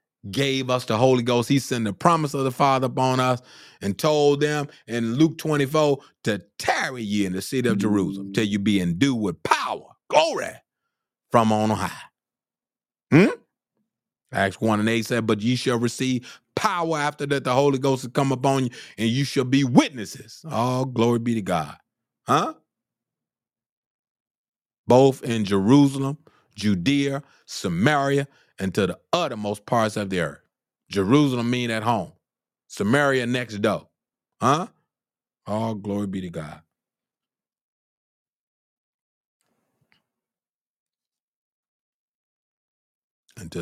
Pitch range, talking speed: 105-135 Hz, 135 wpm